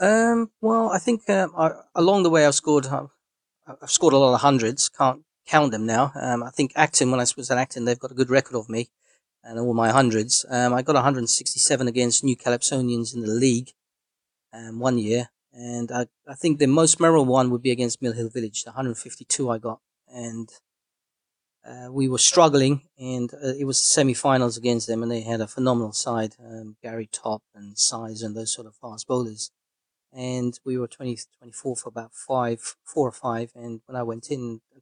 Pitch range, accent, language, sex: 115-140 Hz, British, English, male